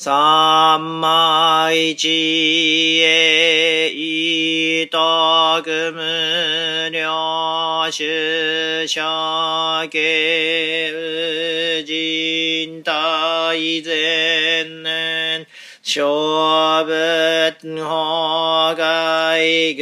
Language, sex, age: Japanese, male, 40-59